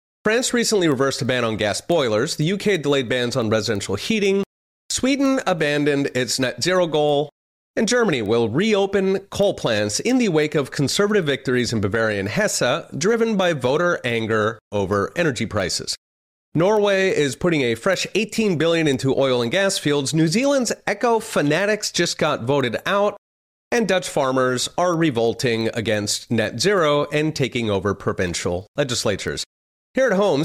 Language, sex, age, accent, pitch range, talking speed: English, male, 30-49, American, 115-185 Hz, 155 wpm